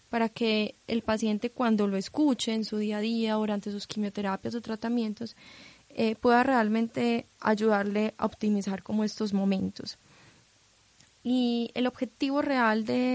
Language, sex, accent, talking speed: Spanish, female, Colombian, 140 wpm